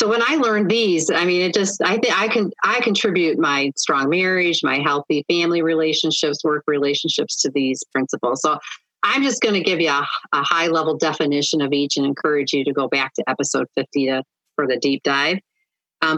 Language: English